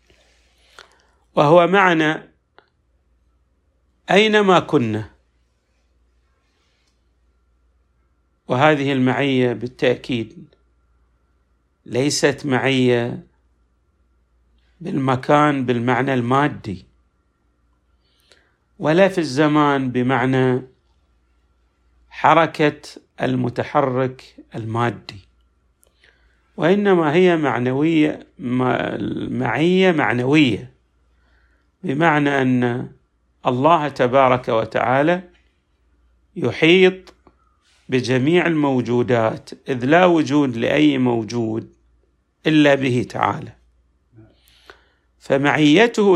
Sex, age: male, 50-69